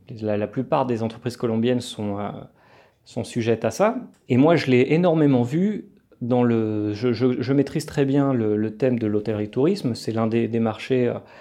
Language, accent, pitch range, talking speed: French, French, 115-150 Hz, 185 wpm